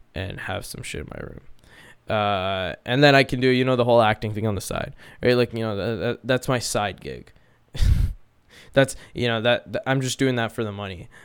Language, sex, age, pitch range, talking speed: English, male, 10-29, 110-130 Hz, 220 wpm